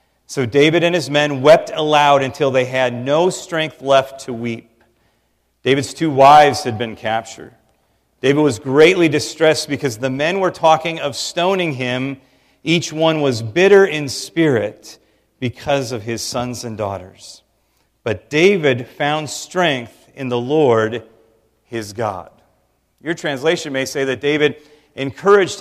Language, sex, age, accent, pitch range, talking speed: English, male, 40-59, American, 130-155 Hz, 145 wpm